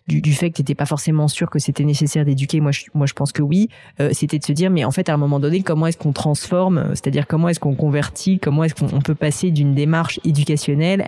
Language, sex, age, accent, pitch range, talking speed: French, female, 20-39, French, 140-165 Hz, 265 wpm